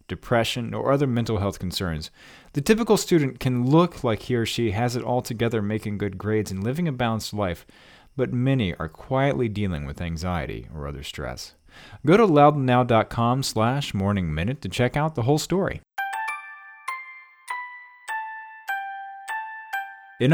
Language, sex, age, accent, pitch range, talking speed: English, male, 40-59, American, 105-160 Hz, 150 wpm